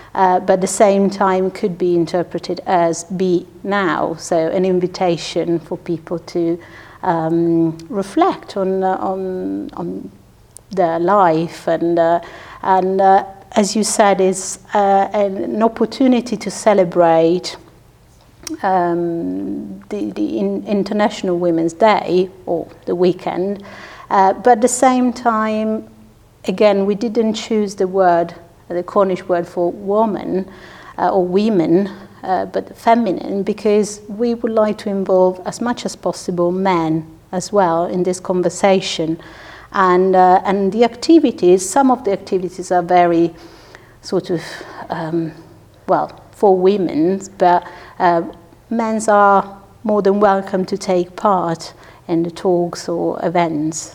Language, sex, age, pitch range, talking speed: English, female, 50-69, 170-205 Hz, 135 wpm